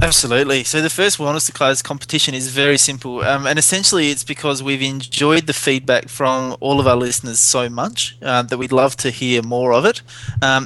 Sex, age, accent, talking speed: male, 20-39, Australian, 210 wpm